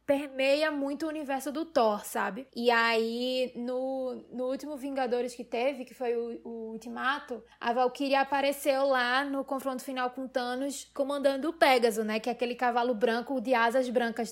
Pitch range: 235-275 Hz